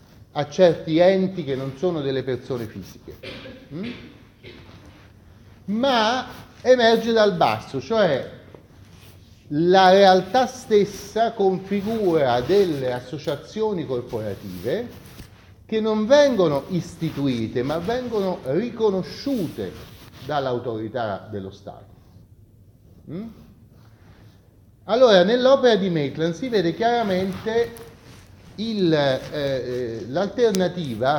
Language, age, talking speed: Italian, 40-59, 75 wpm